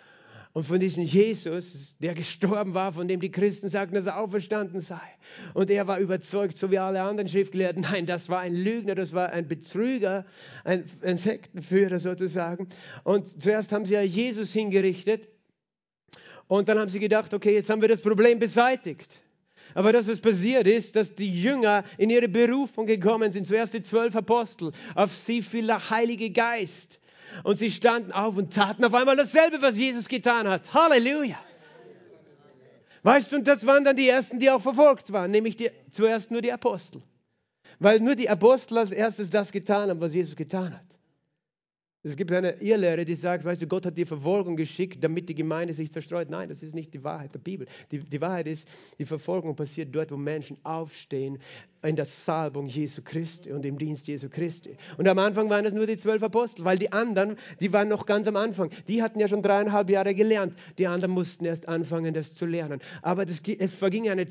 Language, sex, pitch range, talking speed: German, male, 175-225 Hz, 195 wpm